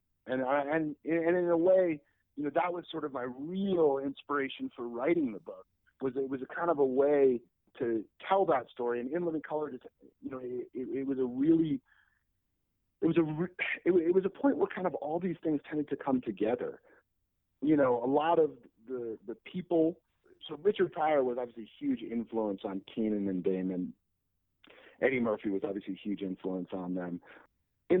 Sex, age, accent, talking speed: male, 40-59, American, 195 wpm